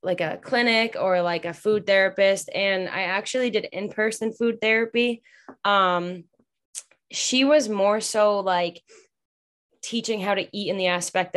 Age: 10-29